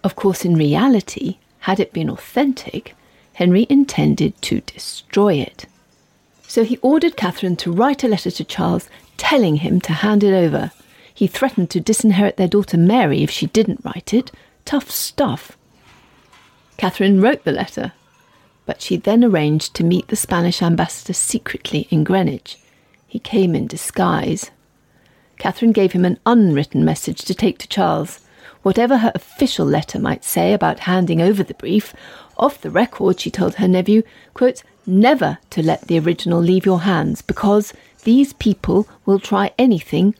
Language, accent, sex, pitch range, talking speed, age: English, British, female, 180-235 Hz, 160 wpm, 40-59